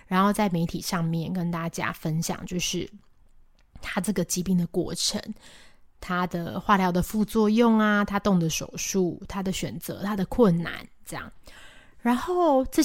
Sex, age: female, 20-39